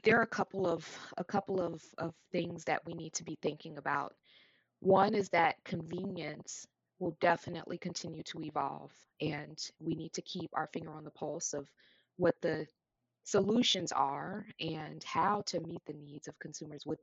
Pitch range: 155-180 Hz